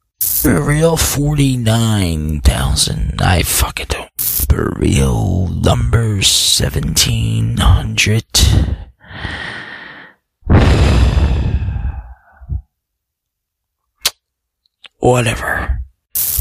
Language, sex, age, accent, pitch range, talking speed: English, male, 20-39, American, 75-105 Hz, 40 wpm